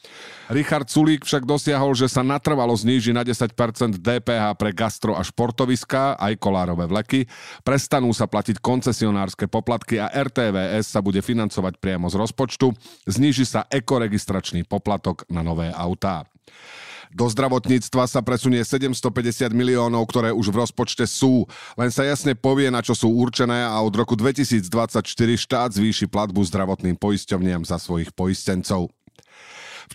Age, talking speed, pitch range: 40-59, 140 wpm, 105-135 Hz